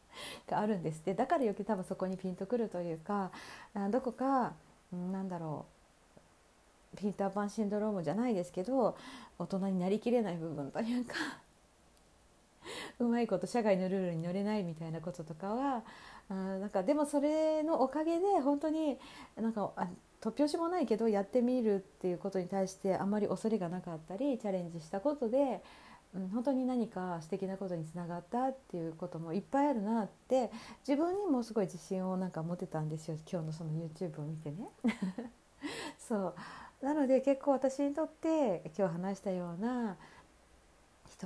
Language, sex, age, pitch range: Japanese, female, 40-59, 180-245 Hz